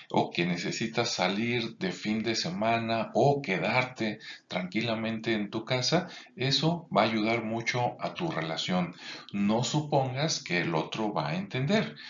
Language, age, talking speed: Spanish, 40-59, 150 wpm